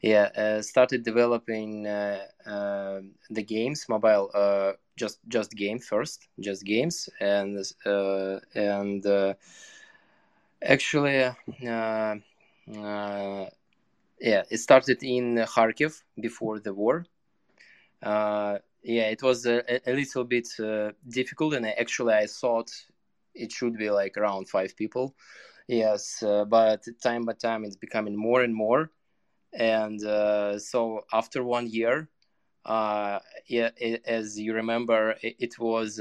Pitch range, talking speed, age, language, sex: 100-120 Hz, 130 wpm, 20-39, English, male